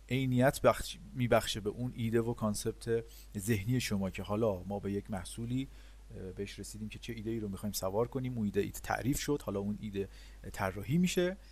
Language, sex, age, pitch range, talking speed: Persian, male, 40-59, 100-140 Hz, 195 wpm